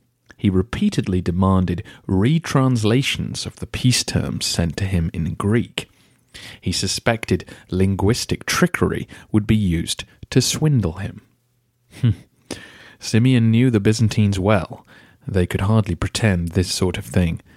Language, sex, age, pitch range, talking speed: English, male, 40-59, 95-120 Hz, 125 wpm